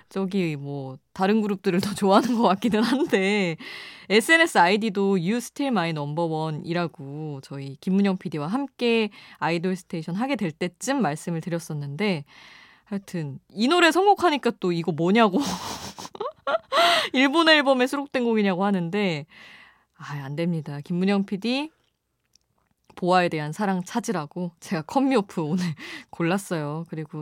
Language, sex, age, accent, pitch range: Korean, female, 20-39, native, 170-230 Hz